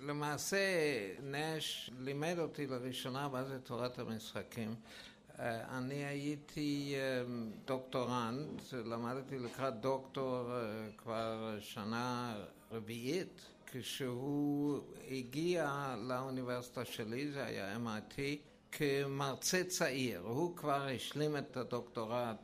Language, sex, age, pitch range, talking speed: Hebrew, male, 60-79, 120-150 Hz, 85 wpm